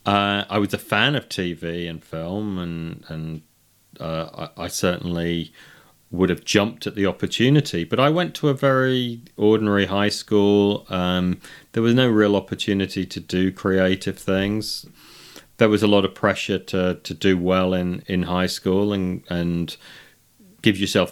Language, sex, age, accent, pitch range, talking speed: English, male, 30-49, British, 85-105 Hz, 165 wpm